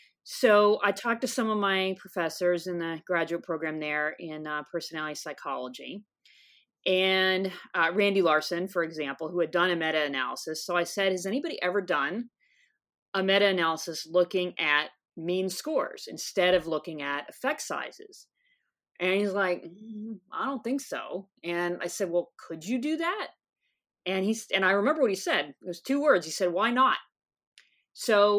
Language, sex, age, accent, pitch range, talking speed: English, female, 30-49, American, 170-215 Hz, 175 wpm